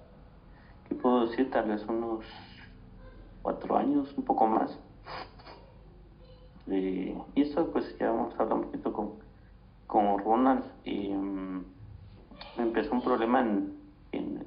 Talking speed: 120 wpm